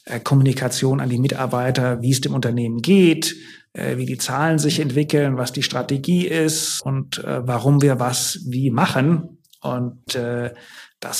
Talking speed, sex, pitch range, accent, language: 140 wpm, male, 125-155 Hz, German, German